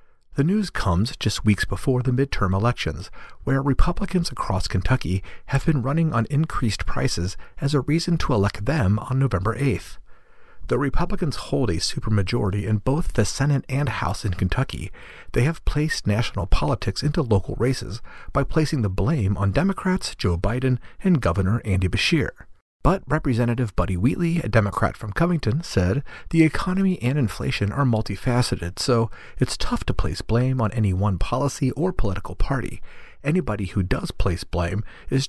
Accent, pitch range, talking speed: American, 100-145 Hz, 160 wpm